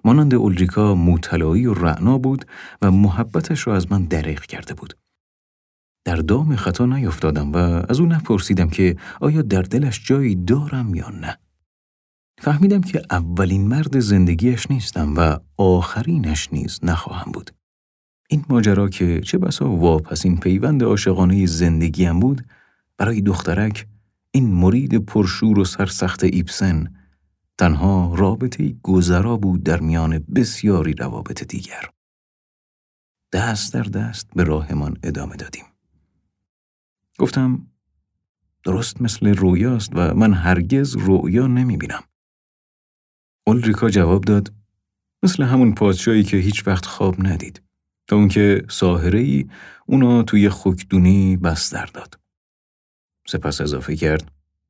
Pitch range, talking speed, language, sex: 85-110 Hz, 120 wpm, Persian, male